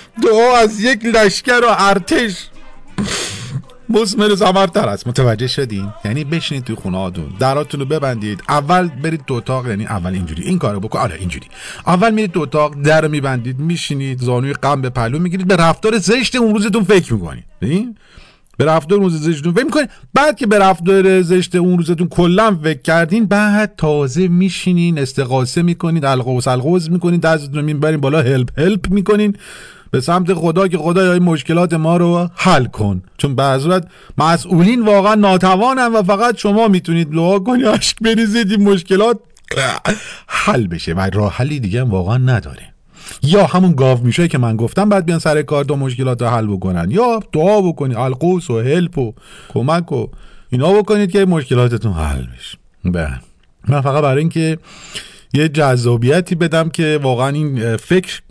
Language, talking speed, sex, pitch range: Persian, 165 wpm, male, 130-195 Hz